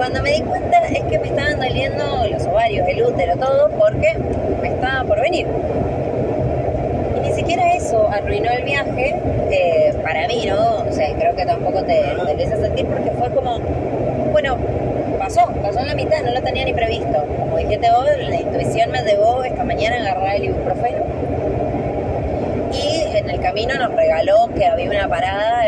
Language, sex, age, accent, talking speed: Spanish, female, 20-39, Argentinian, 180 wpm